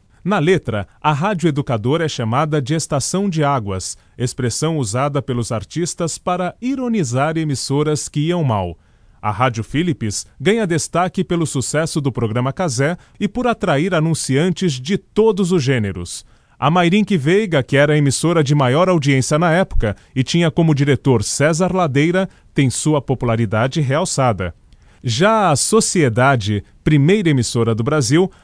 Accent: Brazilian